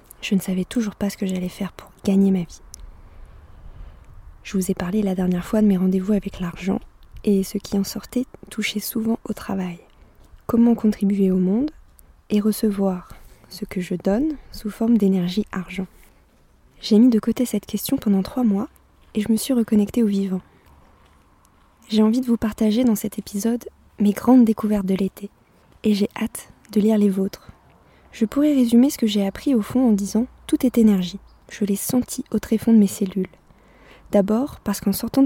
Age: 20-39